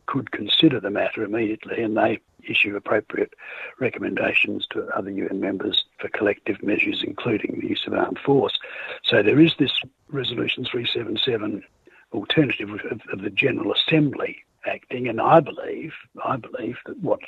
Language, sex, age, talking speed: English, male, 60-79, 145 wpm